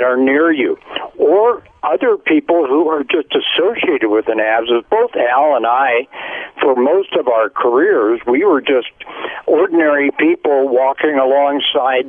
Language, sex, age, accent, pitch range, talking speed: English, male, 60-79, American, 120-200 Hz, 145 wpm